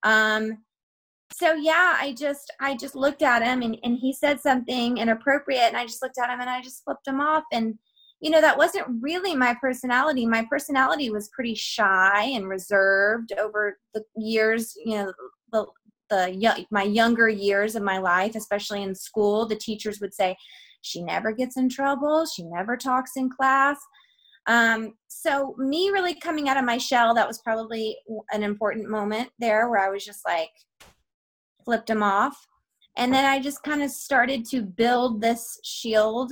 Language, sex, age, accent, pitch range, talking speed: English, female, 20-39, American, 215-265 Hz, 180 wpm